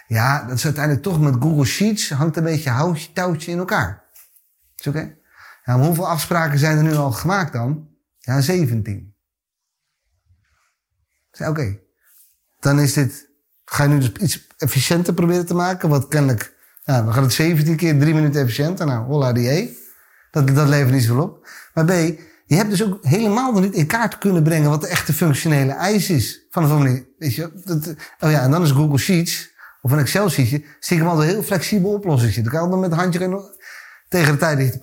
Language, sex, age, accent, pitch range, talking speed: Dutch, male, 30-49, Dutch, 135-175 Hz, 210 wpm